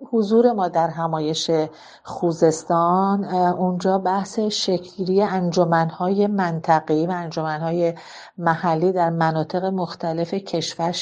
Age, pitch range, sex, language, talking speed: 50-69, 165-190 Hz, female, Persian, 95 wpm